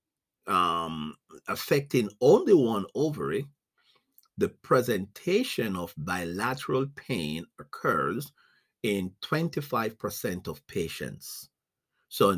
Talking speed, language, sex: 80 wpm, English, male